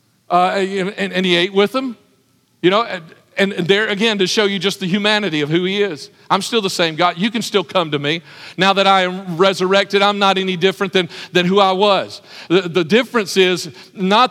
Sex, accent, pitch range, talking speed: male, American, 170-225 Hz, 220 wpm